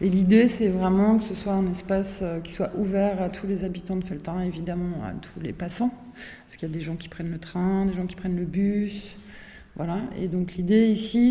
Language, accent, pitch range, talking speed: French, French, 180-200 Hz, 235 wpm